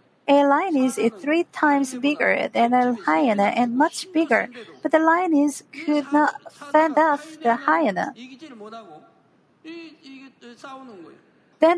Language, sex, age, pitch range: Korean, female, 50-69, 235-310 Hz